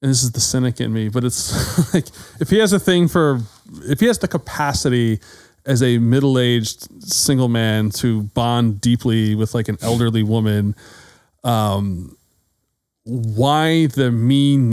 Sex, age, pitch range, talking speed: male, 30-49, 110-135 Hz, 155 wpm